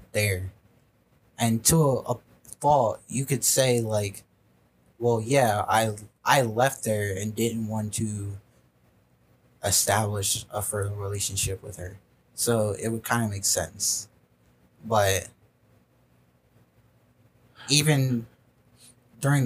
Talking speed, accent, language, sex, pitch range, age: 110 wpm, American, English, male, 105-125 Hz, 20-39